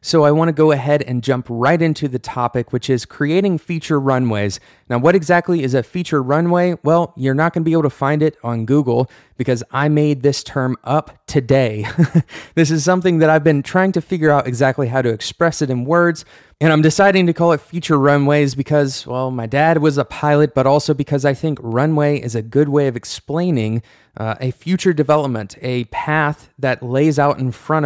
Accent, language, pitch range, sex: American, English, 120-155 Hz, male